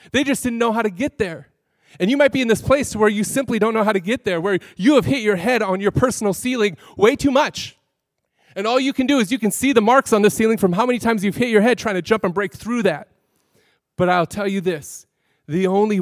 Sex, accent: male, American